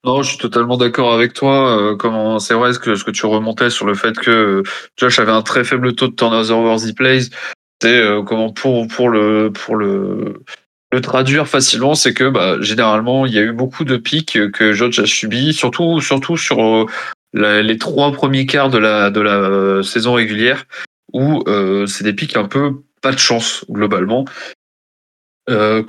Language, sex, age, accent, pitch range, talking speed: French, male, 20-39, French, 110-135 Hz, 200 wpm